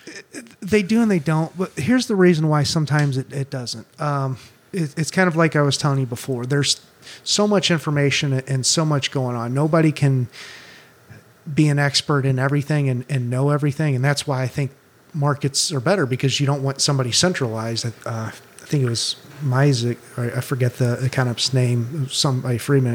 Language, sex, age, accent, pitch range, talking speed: English, male, 30-49, American, 130-150 Hz, 185 wpm